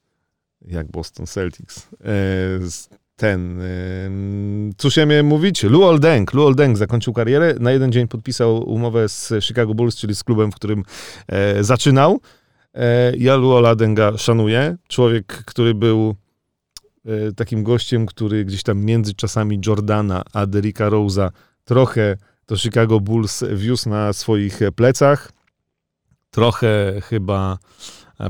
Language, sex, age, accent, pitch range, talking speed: Polish, male, 40-59, native, 95-120 Hz, 125 wpm